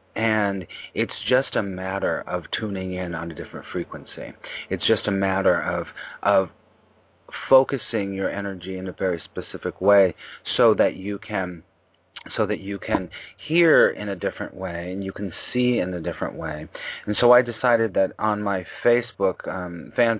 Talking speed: 170 wpm